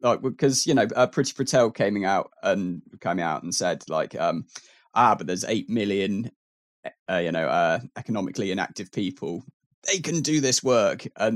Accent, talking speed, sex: British, 180 wpm, male